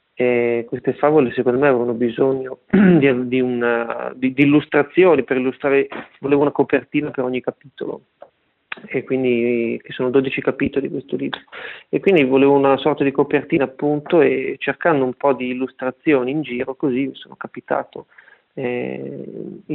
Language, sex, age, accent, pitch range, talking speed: Italian, male, 40-59, native, 125-145 Hz, 155 wpm